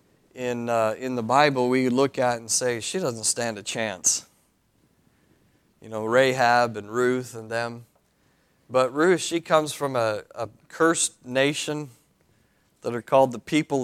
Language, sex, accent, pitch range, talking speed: English, male, American, 115-140 Hz, 155 wpm